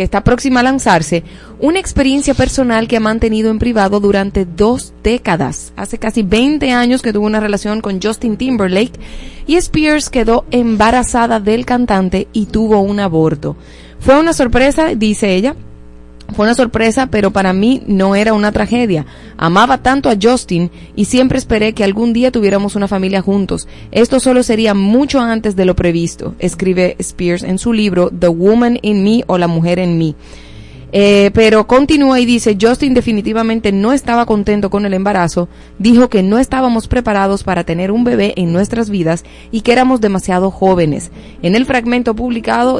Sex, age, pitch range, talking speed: female, 30-49, 195-245 Hz, 170 wpm